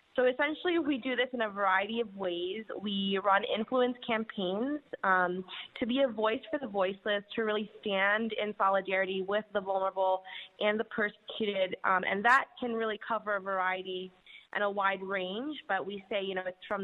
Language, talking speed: English, 185 wpm